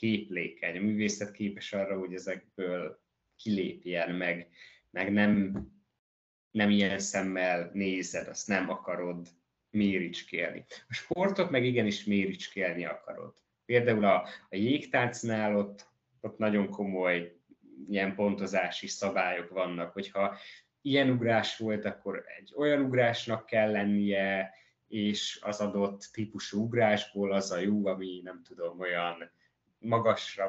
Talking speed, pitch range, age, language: 120 wpm, 95-110 Hz, 20-39, Hungarian